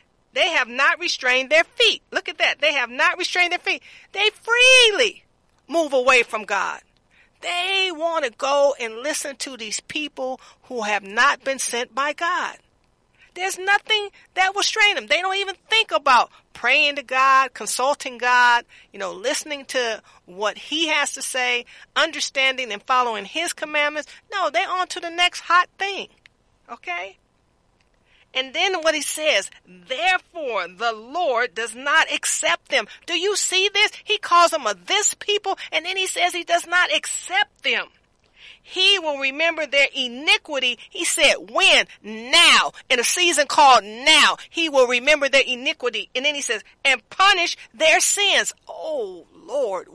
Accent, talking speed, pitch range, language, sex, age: American, 165 wpm, 260-365 Hz, English, female, 40-59